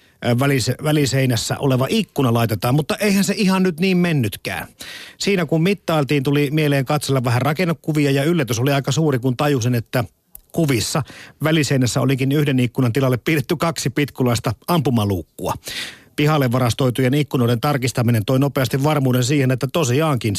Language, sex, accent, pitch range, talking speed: Finnish, male, native, 125-155 Hz, 140 wpm